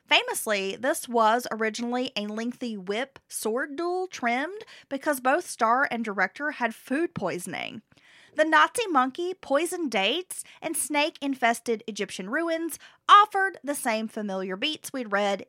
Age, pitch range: 30-49, 220-320 Hz